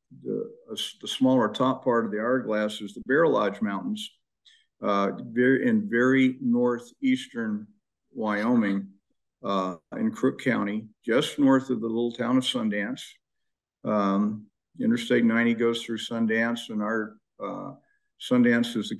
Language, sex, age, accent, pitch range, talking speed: English, male, 50-69, American, 105-155 Hz, 135 wpm